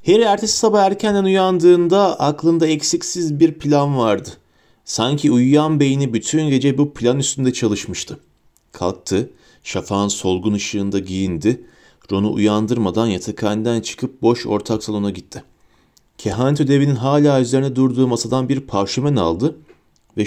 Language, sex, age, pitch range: Turkish, male, 30-49, 110-155 Hz